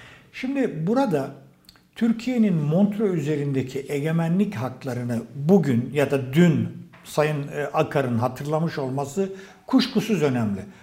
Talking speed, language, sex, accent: 95 wpm, Turkish, male, native